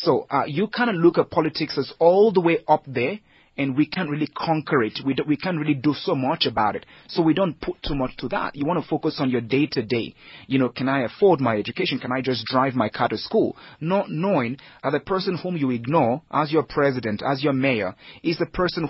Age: 30-49